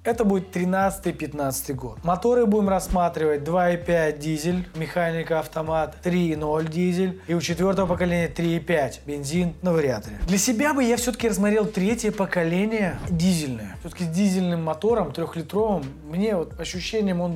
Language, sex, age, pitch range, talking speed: Russian, male, 20-39, 165-215 Hz, 135 wpm